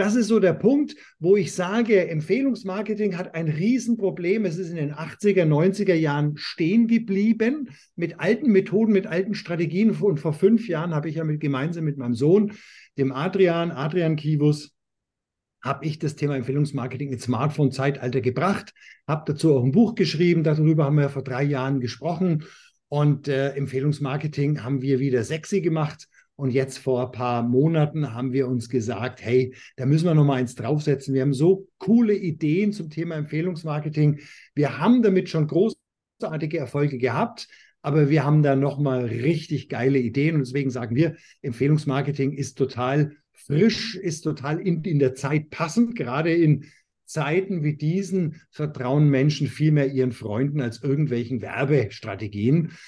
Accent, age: German, 50-69